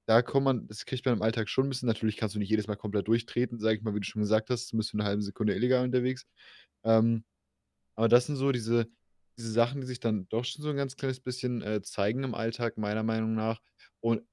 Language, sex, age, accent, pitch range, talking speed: German, male, 20-39, German, 105-125 Hz, 255 wpm